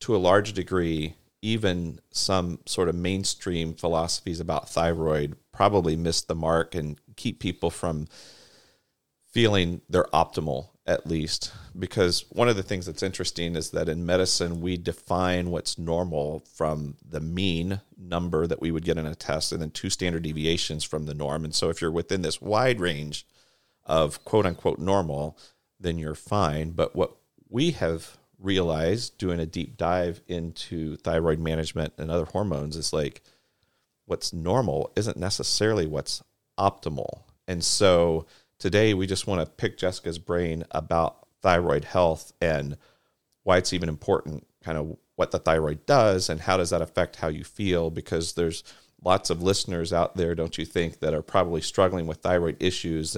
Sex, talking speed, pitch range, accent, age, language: male, 165 wpm, 80-90 Hz, American, 40-59, English